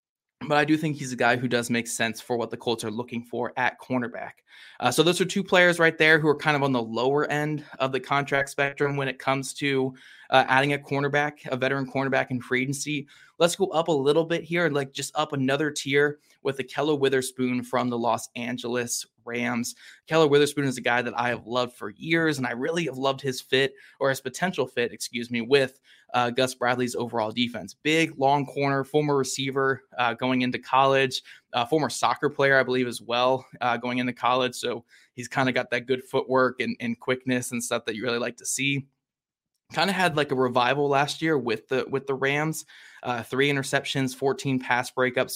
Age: 20-39